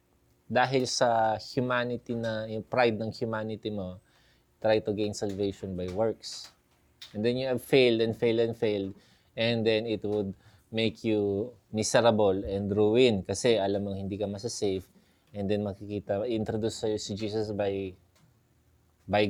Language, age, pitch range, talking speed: Filipino, 20-39, 95-115 Hz, 145 wpm